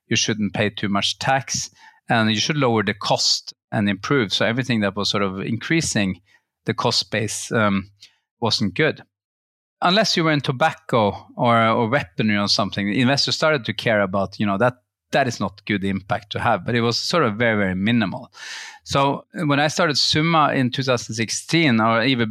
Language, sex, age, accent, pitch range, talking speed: English, male, 30-49, Norwegian, 105-135 Hz, 185 wpm